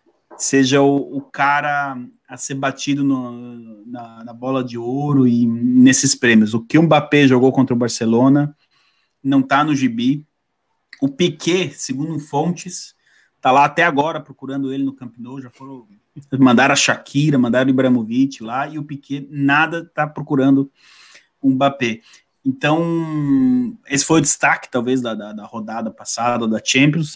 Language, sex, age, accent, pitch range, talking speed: Portuguese, male, 30-49, Brazilian, 125-150 Hz, 150 wpm